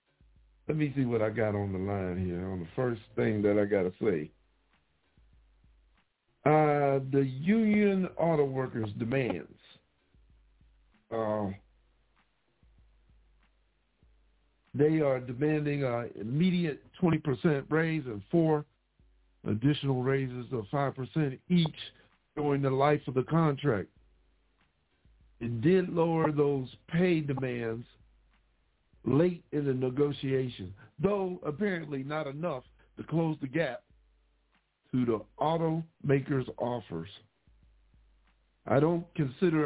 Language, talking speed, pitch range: English, 105 wpm, 105-155 Hz